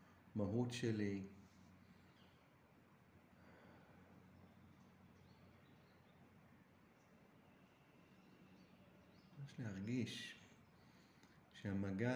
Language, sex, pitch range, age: Hebrew, male, 95-110 Hz, 50-69